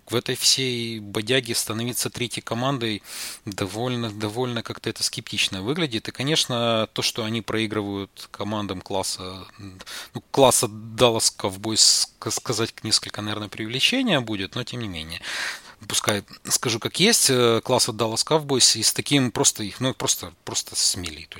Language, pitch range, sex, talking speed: Russian, 100-125 Hz, male, 145 wpm